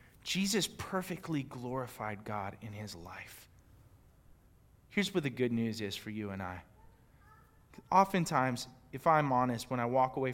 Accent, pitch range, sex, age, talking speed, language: American, 120-175 Hz, male, 20-39, 145 wpm, English